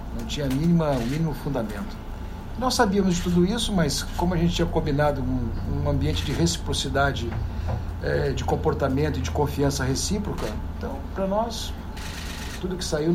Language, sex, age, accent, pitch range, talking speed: Portuguese, male, 60-79, Brazilian, 130-170 Hz, 150 wpm